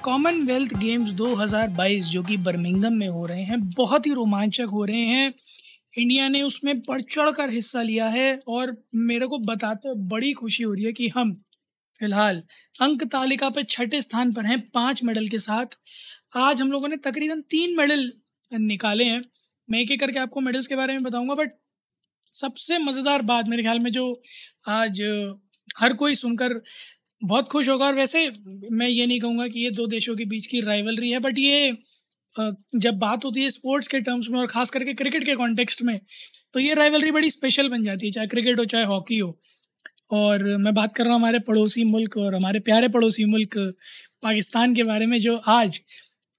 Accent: native